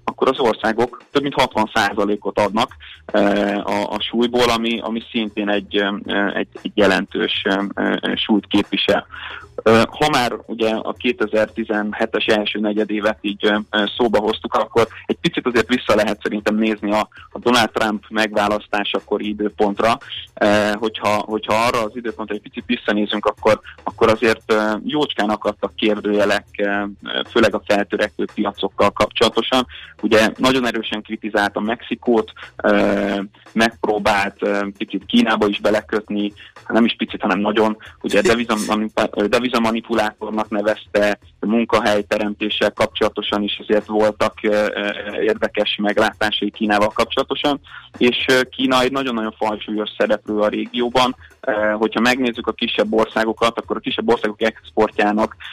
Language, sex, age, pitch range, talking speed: Hungarian, male, 20-39, 105-115 Hz, 115 wpm